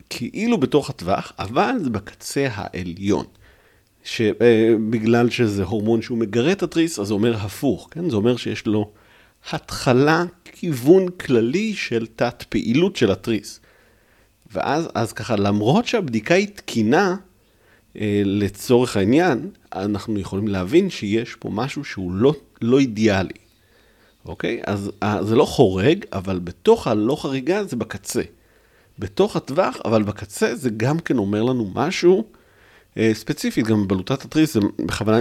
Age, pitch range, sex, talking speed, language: 50-69, 100-130 Hz, male, 130 wpm, Hebrew